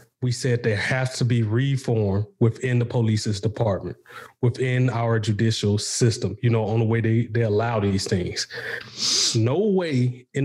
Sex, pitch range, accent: male, 115-160 Hz, American